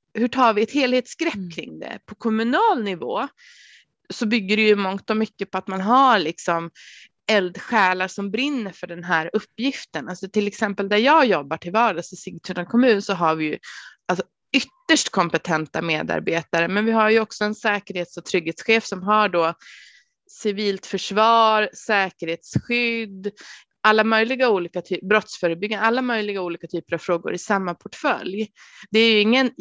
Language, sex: Swedish, female